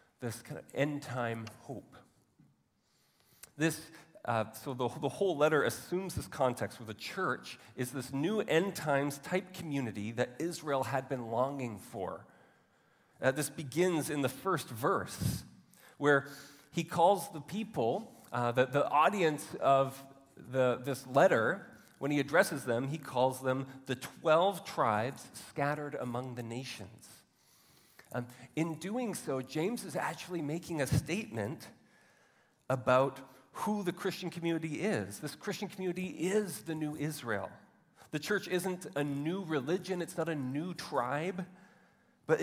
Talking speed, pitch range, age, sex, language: 140 wpm, 130-175 Hz, 40-59, male, English